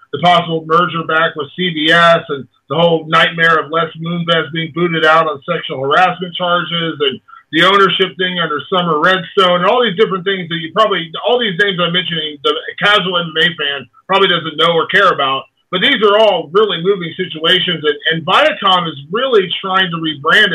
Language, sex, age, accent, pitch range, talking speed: English, male, 40-59, American, 160-210 Hz, 190 wpm